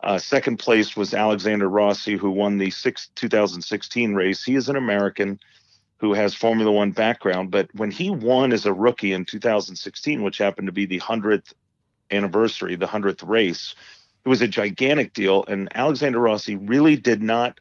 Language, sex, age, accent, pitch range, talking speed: English, male, 40-59, American, 100-115 Hz, 170 wpm